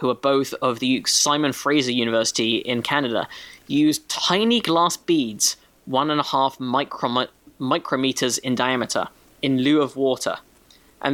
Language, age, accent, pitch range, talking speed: English, 10-29, British, 130-160 Hz, 140 wpm